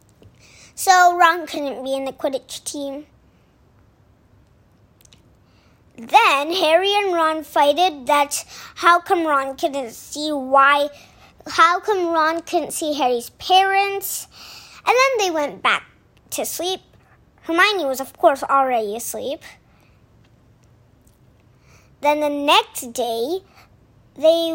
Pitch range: 260-350 Hz